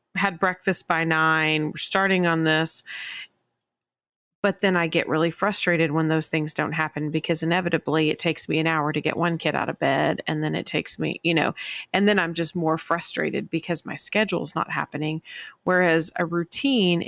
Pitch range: 155-175 Hz